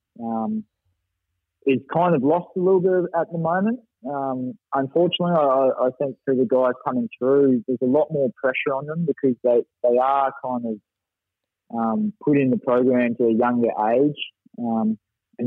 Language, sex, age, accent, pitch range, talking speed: English, male, 20-39, Australian, 115-135 Hz, 175 wpm